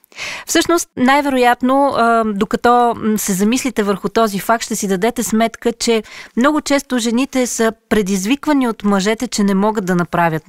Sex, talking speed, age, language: female, 145 wpm, 20-39, Bulgarian